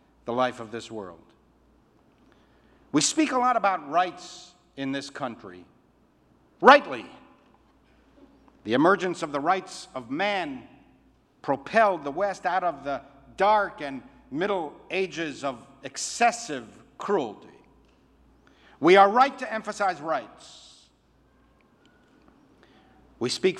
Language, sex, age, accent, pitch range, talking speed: English, male, 60-79, American, 155-250 Hz, 110 wpm